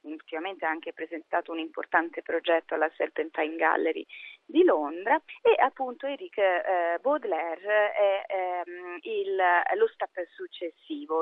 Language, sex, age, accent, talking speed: Italian, female, 30-49, native, 105 wpm